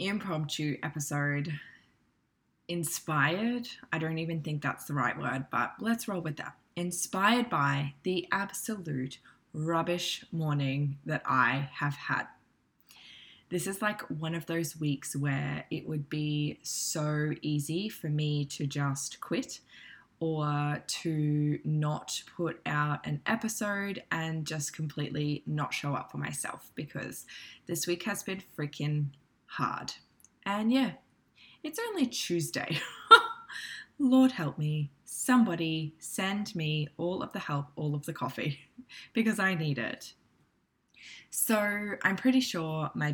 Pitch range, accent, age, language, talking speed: 145-190 Hz, Australian, 10-29, English, 130 wpm